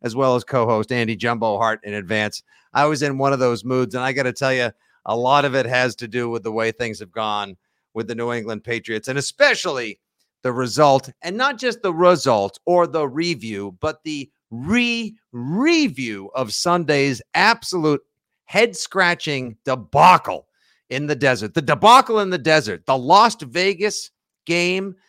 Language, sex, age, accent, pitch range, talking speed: English, male, 50-69, American, 115-160 Hz, 170 wpm